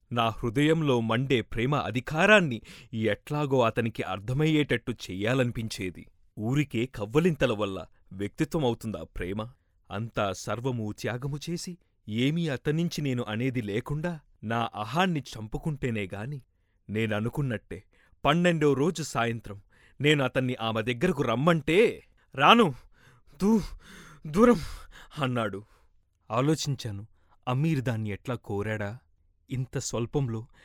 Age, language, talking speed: 30-49, Telugu, 80 wpm